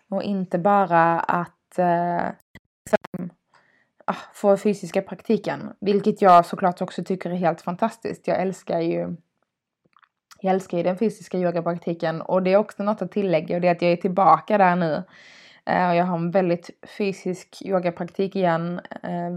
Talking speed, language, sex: 160 wpm, Swedish, female